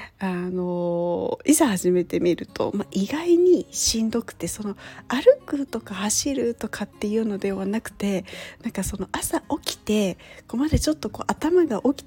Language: Japanese